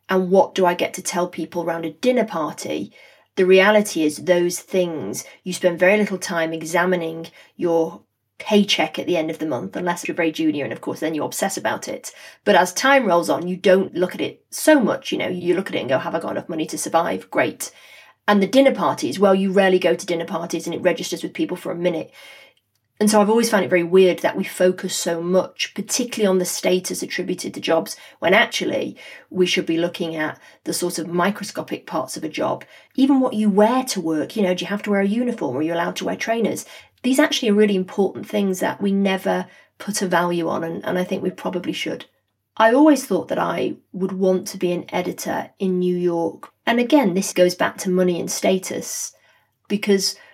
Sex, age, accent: female, 30-49, British